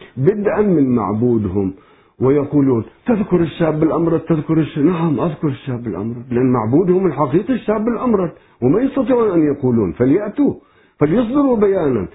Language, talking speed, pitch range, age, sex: Arabic, 125 wpm, 145-240 Hz, 50-69, male